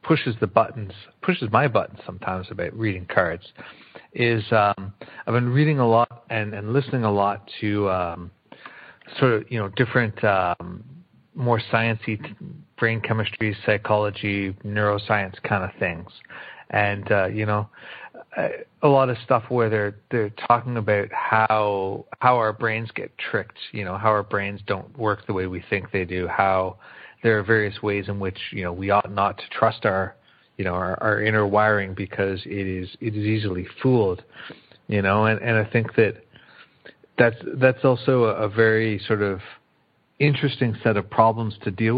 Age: 30-49